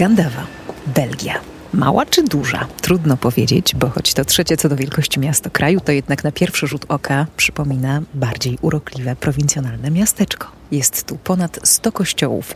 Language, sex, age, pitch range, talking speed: Polish, female, 30-49, 135-175 Hz, 155 wpm